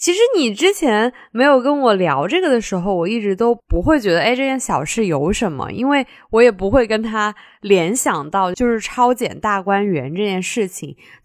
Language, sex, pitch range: Chinese, female, 180-280 Hz